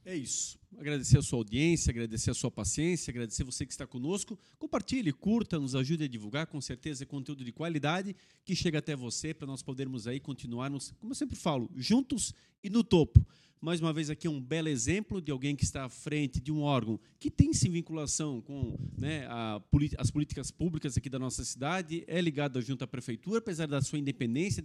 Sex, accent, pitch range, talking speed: male, Brazilian, 130-165 Hz, 205 wpm